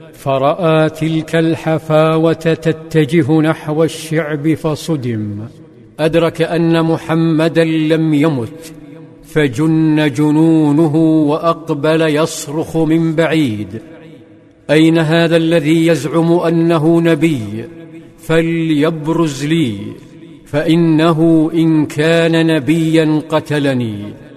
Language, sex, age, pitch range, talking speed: Arabic, male, 50-69, 155-165 Hz, 75 wpm